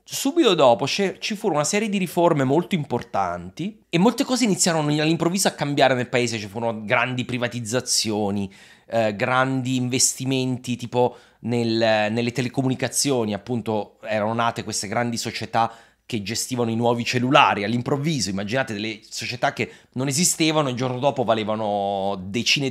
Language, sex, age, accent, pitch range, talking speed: Italian, male, 30-49, native, 115-140 Hz, 140 wpm